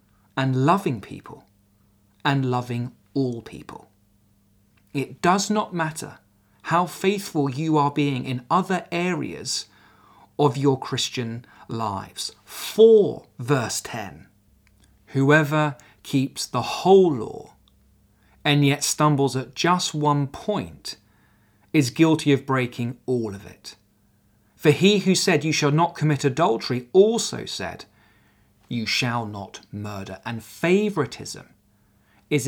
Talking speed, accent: 115 wpm, British